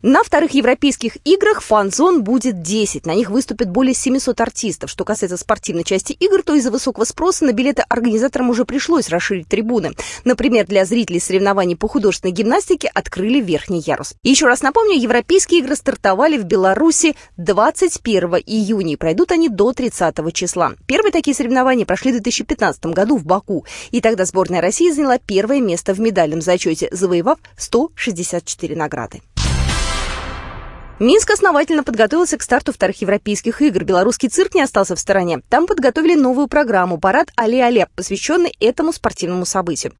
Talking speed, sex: 155 wpm, female